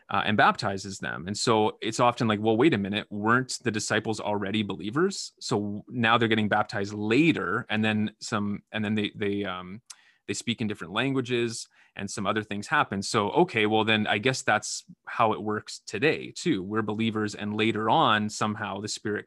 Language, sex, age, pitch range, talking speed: English, male, 30-49, 105-115 Hz, 190 wpm